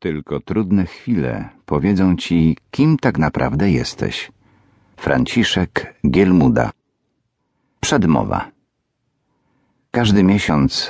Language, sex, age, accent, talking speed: Polish, male, 50-69, native, 75 wpm